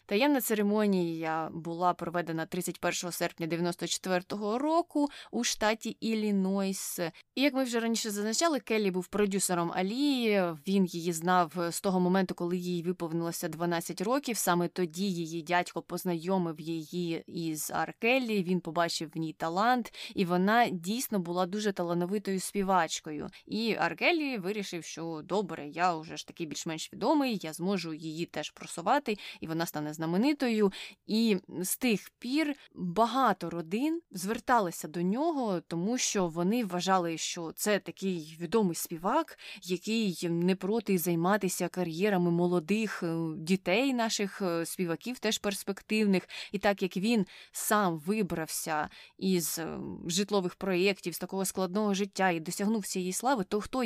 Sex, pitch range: female, 175-215 Hz